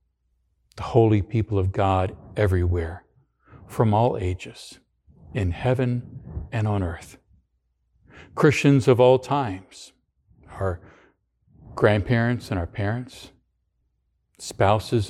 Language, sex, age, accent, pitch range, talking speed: English, male, 60-79, American, 95-120 Hz, 95 wpm